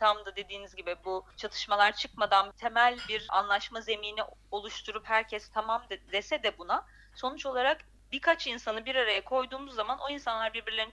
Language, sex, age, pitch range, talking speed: English, female, 30-49, 220-270 Hz, 155 wpm